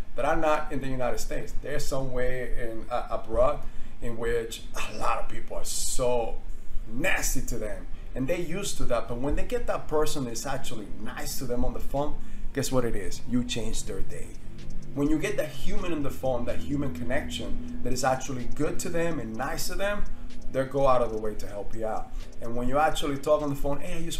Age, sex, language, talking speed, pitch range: 30-49, male, English, 235 wpm, 115-140 Hz